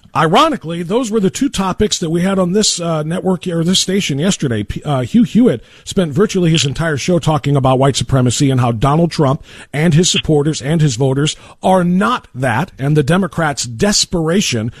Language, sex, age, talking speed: English, male, 50-69, 190 wpm